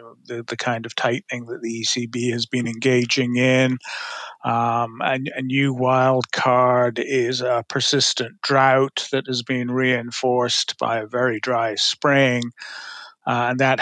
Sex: male